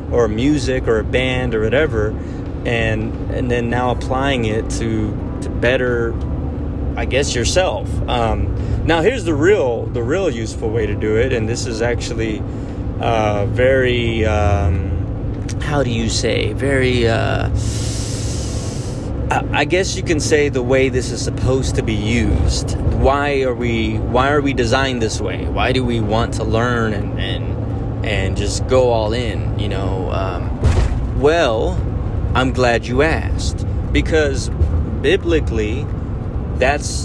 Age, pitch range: 20-39, 100-125 Hz